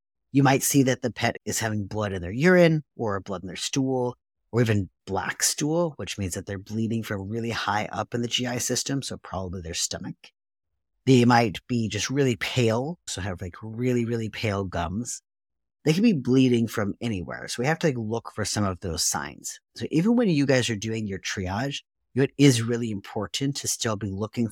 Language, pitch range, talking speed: English, 100-130 Hz, 210 wpm